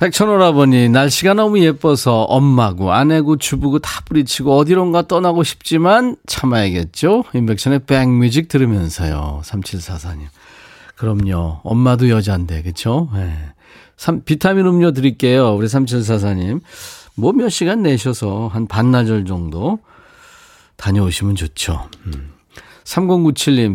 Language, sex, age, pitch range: Korean, male, 40-59, 105-155 Hz